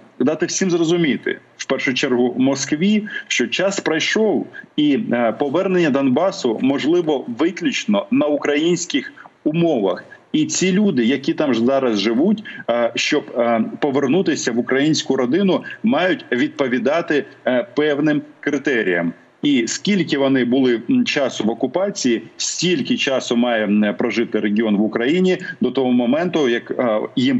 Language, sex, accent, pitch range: Russian, male, native, 125-200 Hz